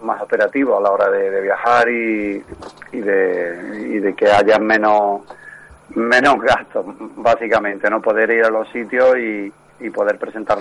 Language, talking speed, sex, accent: Spanish, 165 wpm, male, Spanish